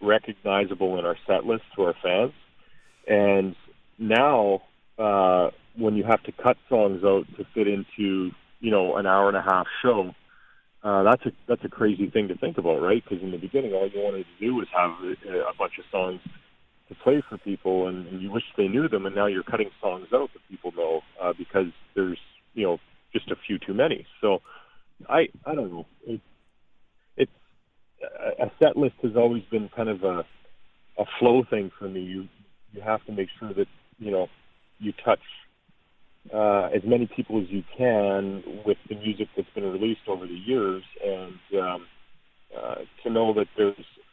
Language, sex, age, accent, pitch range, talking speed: English, male, 40-59, American, 95-110 Hz, 190 wpm